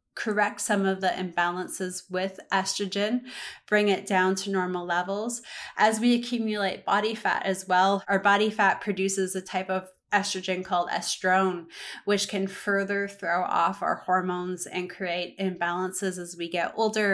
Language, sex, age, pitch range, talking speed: English, female, 20-39, 185-215 Hz, 155 wpm